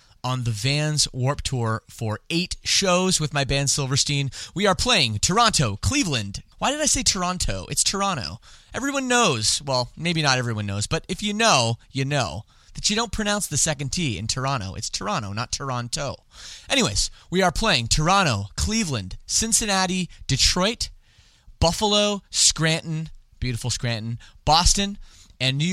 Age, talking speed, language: 30-49, 150 wpm, English